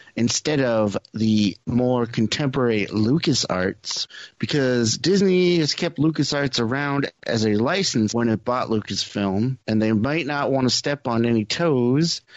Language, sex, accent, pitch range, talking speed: English, male, American, 110-145 Hz, 145 wpm